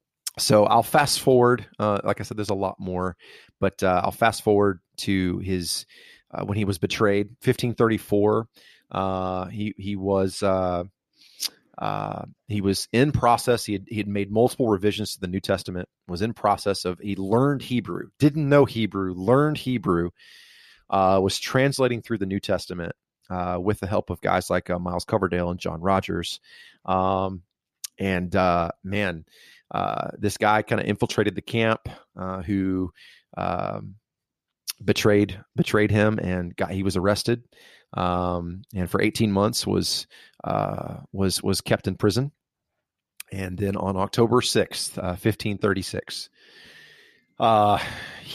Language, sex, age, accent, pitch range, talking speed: English, male, 30-49, American, 95-110 Hz, 150 wpm